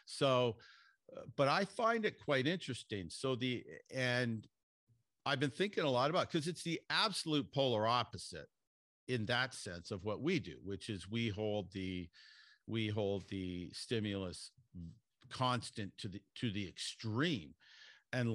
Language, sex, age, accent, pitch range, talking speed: English, male, 50-69, American, 100-130 Hz, 155 wpm